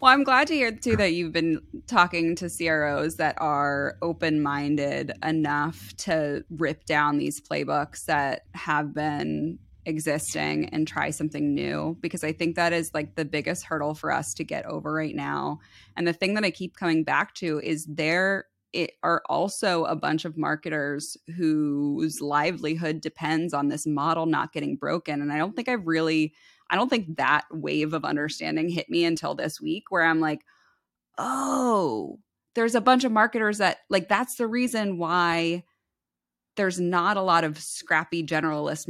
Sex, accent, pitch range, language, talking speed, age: female, American, 150-185 Hz, English, 170 wpm, 20-39